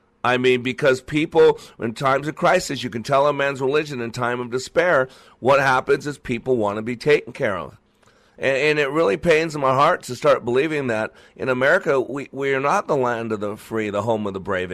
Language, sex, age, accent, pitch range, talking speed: English, male, 50-69, American, 125-155 Hz, 225 wpm